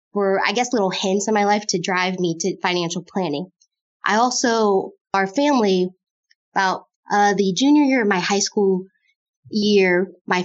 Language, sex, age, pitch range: English, female, 20-39, 180-200 Hz